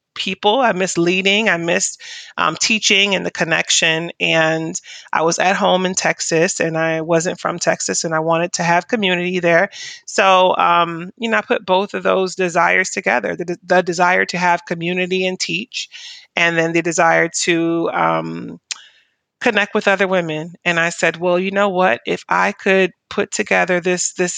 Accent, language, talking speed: American, English, 180 wpm